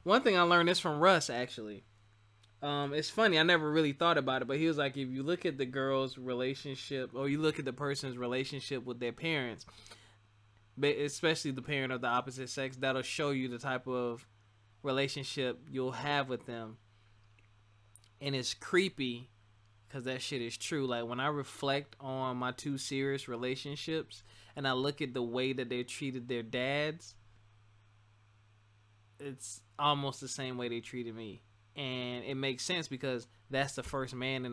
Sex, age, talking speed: male, 20-39, 175 wpm